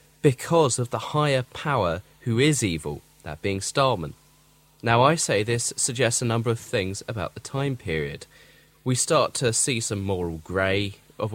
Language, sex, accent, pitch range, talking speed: English, male, British, 110-145 Hz, 170 wpm